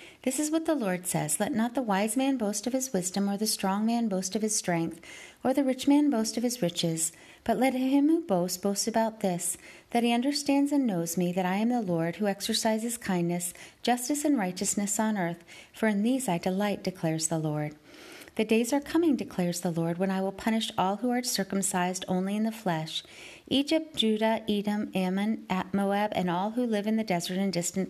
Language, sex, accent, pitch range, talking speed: English, female, American, 180-245 Hz, 215 wpm